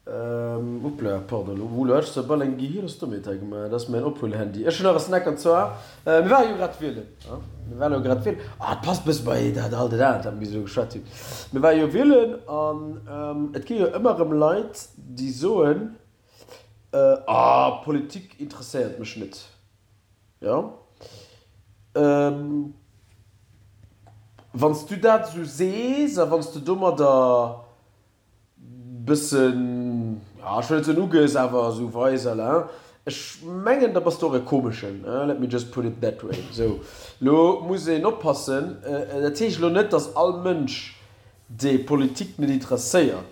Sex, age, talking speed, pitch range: male, 40-59, 130 wpm, 110-160 Hz